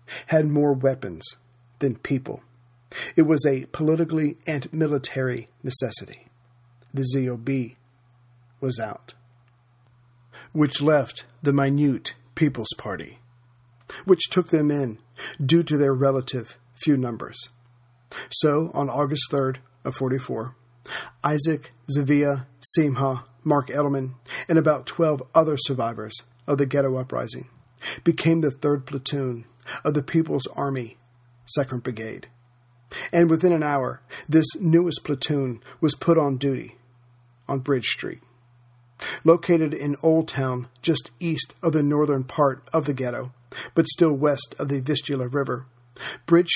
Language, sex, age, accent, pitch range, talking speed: English, male, 40-59, American, 120-150 Hz, 125 wpm